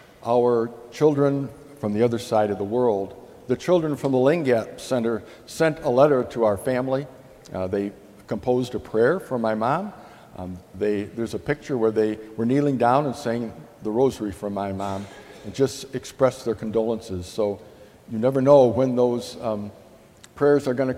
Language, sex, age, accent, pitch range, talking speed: English, male, 60-79, American, 110-140 Hz, 170 wpm